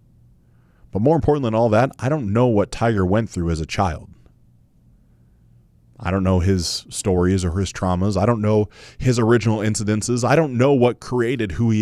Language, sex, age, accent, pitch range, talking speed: English, male, 20-39, American, 85-125 Hz, 190 wpm